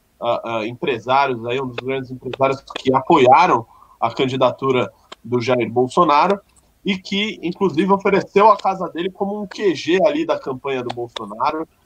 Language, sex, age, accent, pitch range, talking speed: Portuguese, male, 20-39, Brazilian, 125-180 Hz, 150 wpm